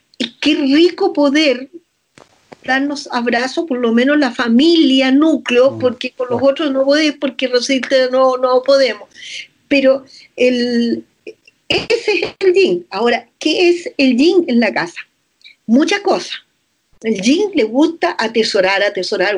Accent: American